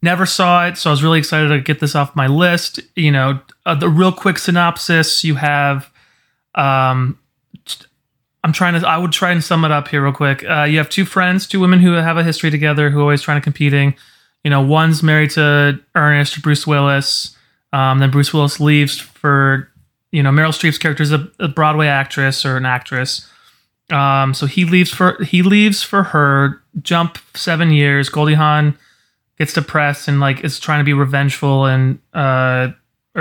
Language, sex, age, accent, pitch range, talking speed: English, male, 30-49, American, 135-155 Hz, 195 wpm